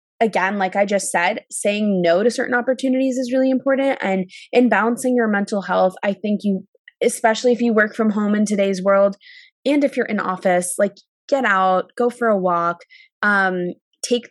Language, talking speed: English, 190 wpm